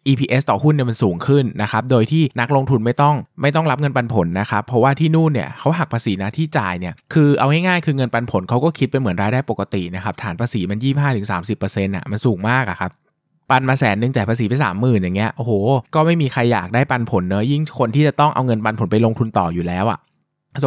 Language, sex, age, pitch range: Thai, male, 20-39, 105-135 Hz